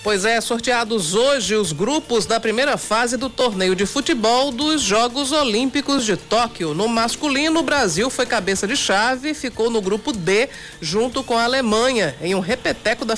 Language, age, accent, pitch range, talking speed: Portuguese, 50-69, Brazilian, 210-260 Hz, 180 wpm